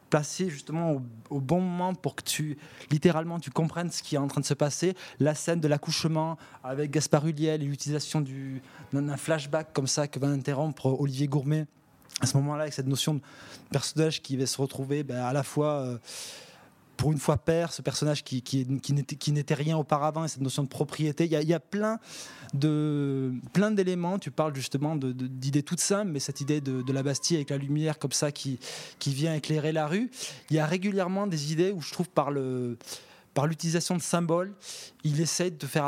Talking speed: 210 wpm